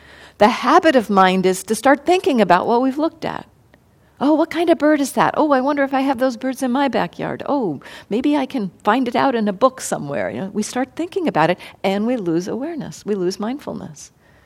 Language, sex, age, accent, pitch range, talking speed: English, female, 50-69, American, 180-255 Hz, 225 wpm